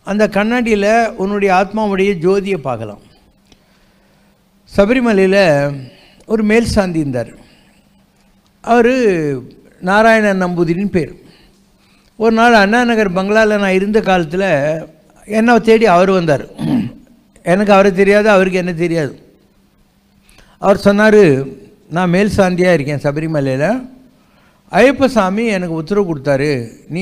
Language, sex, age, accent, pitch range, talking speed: English, male, 60-79, Indian, 155-200 Hz, 100 wpm